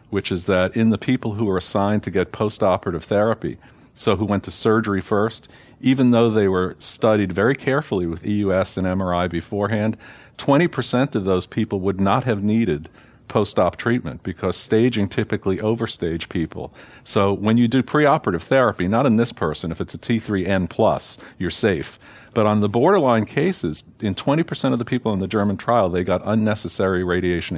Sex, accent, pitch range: male, American, 95-110 Hz